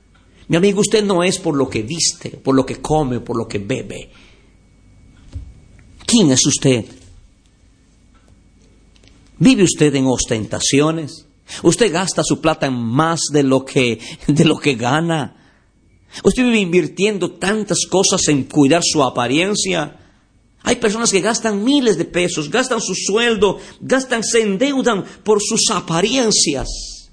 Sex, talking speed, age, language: male, 135 wpm, 50-69, Spanish